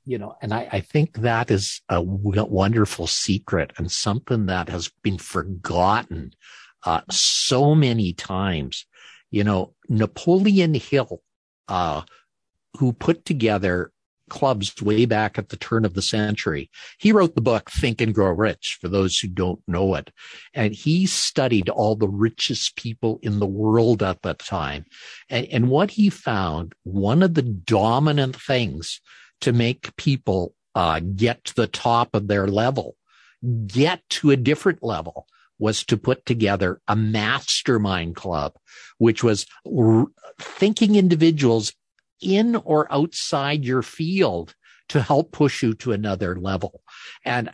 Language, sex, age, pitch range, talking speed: English, male, 50-69, 100-135 Hz, 145 wpm